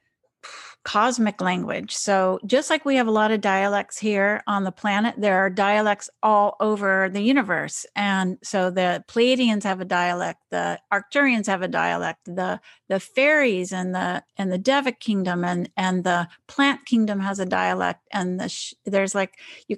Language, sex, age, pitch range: English, female, 50-69, 185-230 Hz